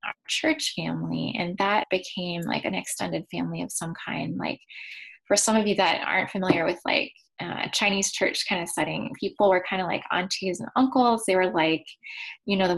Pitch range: 175-235 Hz